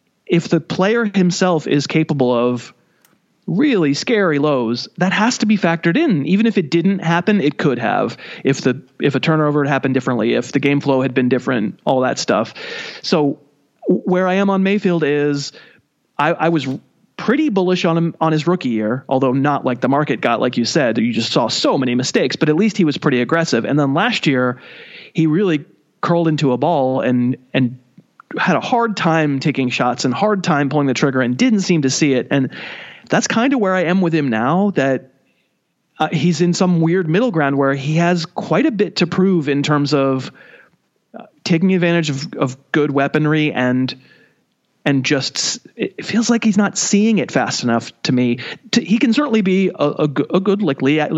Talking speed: 205 wpm